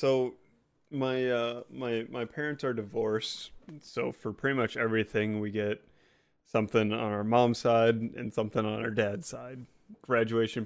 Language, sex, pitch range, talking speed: English, male, 105-130 Hz, 150 wpm